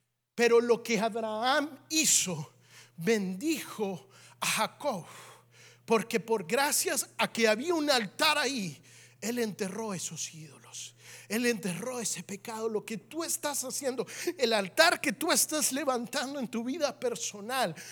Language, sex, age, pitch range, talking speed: Spanish, male, 50-69, 220-290 Hz, 135 wpm